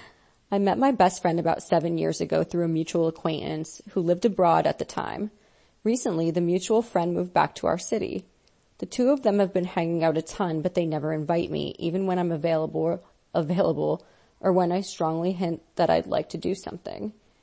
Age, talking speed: 30-49, 205 wpm